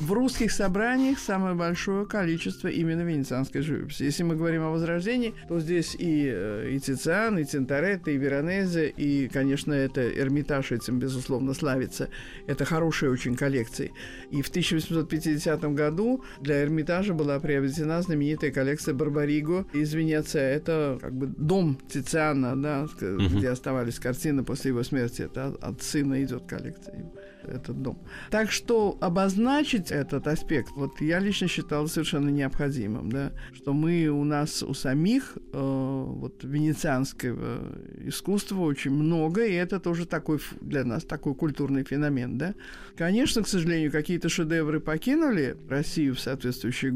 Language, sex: Russian, male